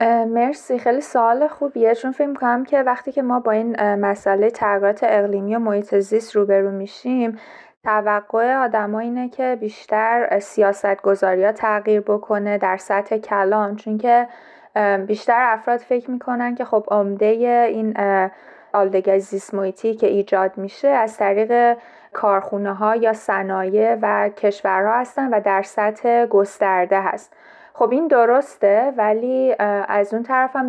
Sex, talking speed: female, 130 wpm